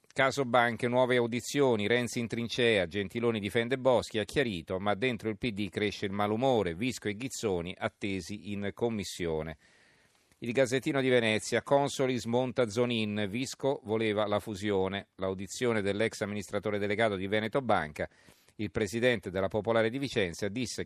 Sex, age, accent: male, 40-59, native